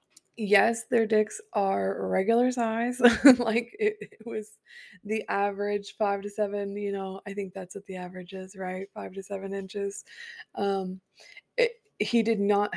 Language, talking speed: English, 155 wpm